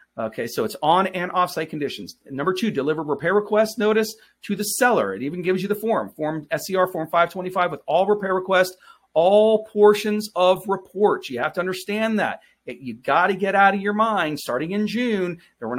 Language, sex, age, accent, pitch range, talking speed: English, male, 40-59, American, 140-210 Hz, 200 wpm